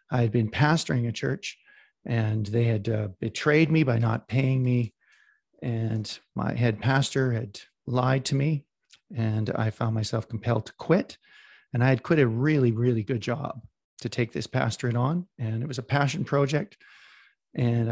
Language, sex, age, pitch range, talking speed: English, male, 40-59, 115-155 Hz, 175 wpm